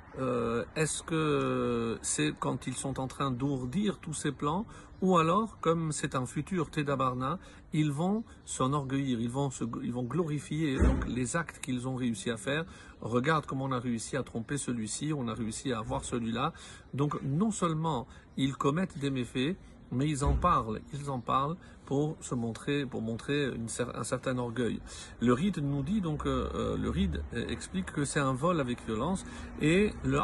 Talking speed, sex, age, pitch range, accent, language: 180 wpm, male, 50-69, 115-155 Hz, French, French